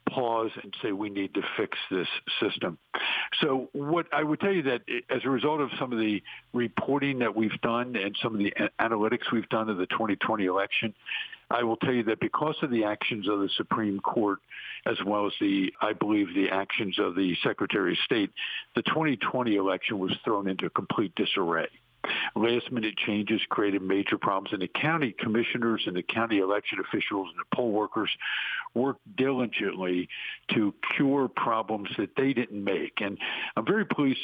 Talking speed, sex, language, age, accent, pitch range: 180 wpm, male, English, 60-79, American, 105-135 Hz